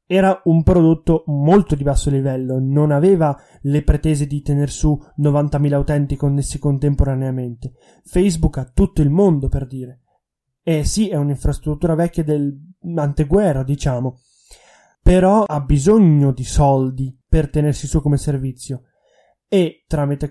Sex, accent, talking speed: male, native, 130 wpm